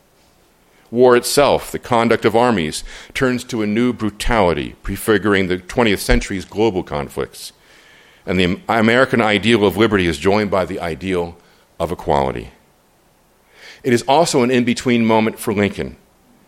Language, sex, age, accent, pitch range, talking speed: English, male, 50-69, American, 95-120 Hz, 140 wpm